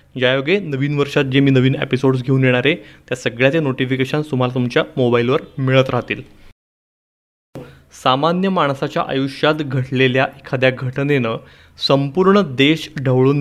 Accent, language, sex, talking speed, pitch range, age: native, Marathi, male, 125 wpm, 125-150 Hz, 20-39